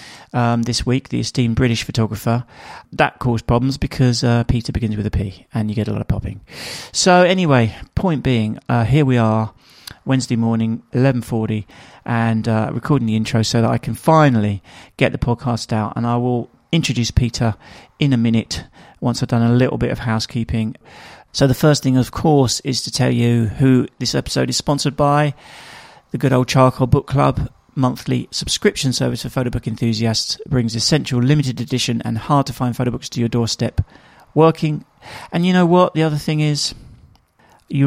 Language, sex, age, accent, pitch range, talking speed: English, male, 40-59, British, 115-135 Hz, 190 wpm